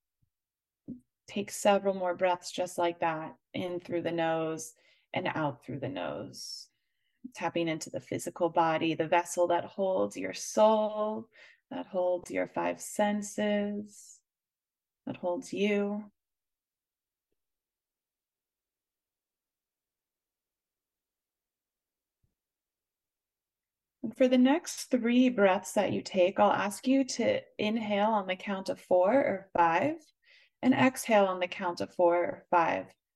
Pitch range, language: 170-215 Hz, English